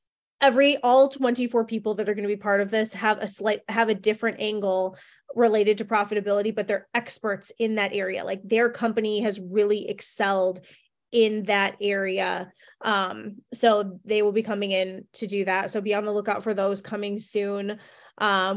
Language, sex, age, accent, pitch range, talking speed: English, female, 20-39, American, 200-230 Hz, 185 wpm